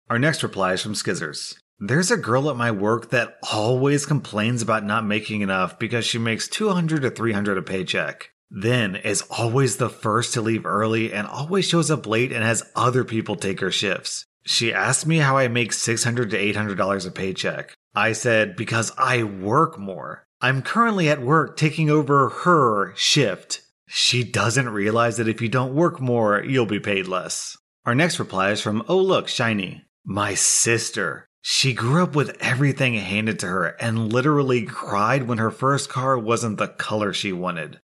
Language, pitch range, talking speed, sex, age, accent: English, 105-135 Hz, 180 wpm, male, 30-49, American